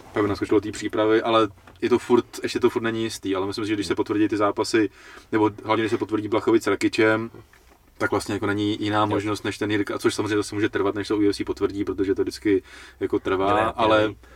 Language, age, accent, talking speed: Czech, 20-39, native, 220 wpm